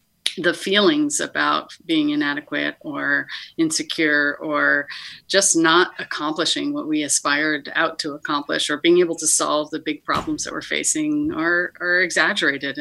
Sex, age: female, 30-49